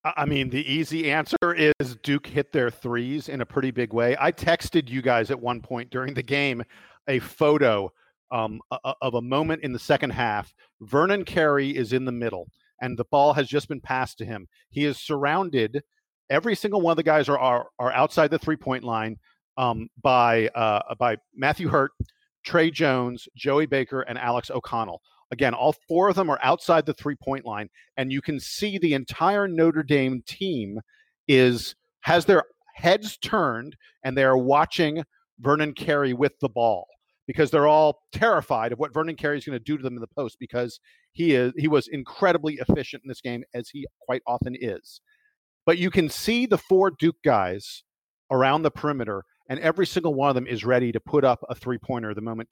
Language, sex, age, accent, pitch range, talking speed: English, male, 50-69, American, 125-155 Hz, 195 wpm